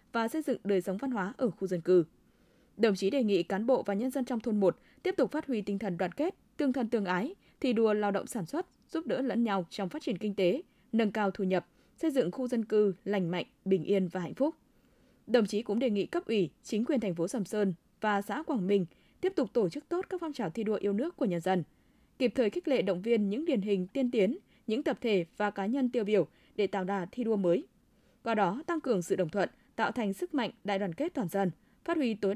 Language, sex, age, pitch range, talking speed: Vietnamese, female, 20-39, 195-260 Hz, 265 wpm